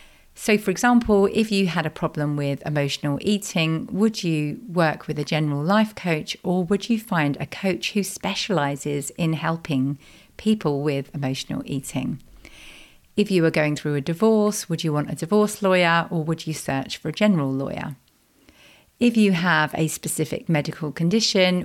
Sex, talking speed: female, 170 wpm